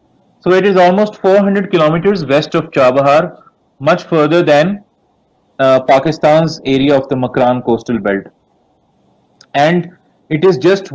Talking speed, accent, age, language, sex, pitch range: 130 wpm, Indian, 30-49, English, male, 130-165 Hz